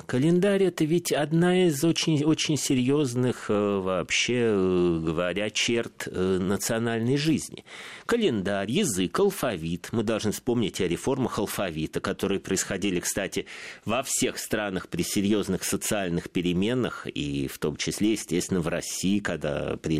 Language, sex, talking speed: Russian, male, 125 wpm